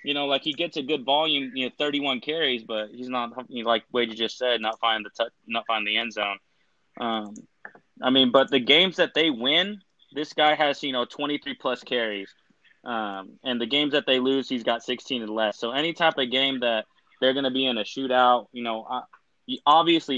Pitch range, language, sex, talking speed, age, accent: 110-130 Hz, English, male, 215 wpm, 20-39, American